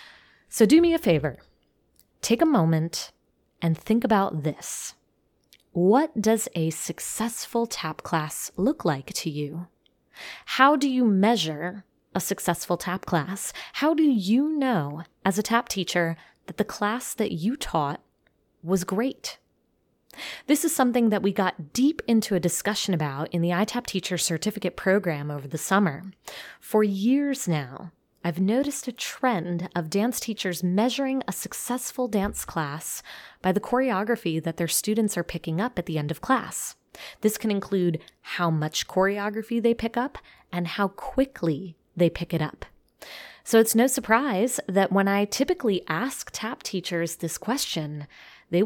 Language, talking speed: English, 155 wpm